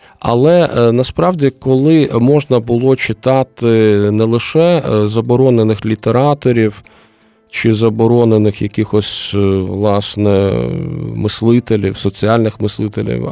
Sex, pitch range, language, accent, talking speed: male, 105-125 Hz, Ukrainian, native, 75 wpm